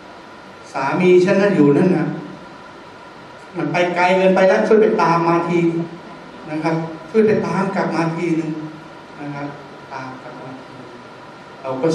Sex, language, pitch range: male, Thai, 135-170 Hz